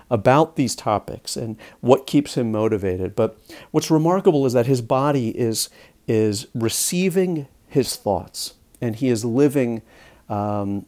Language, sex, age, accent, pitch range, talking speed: English, male, 50-69, American, 110-135 Hz, 140 wpm